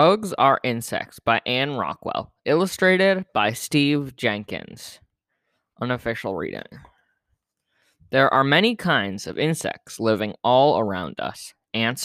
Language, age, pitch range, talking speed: English, 20-39, 110-140 Hz, 115 wpm